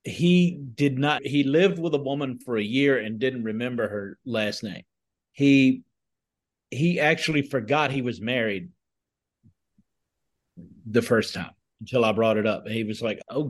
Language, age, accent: English, 40-59, American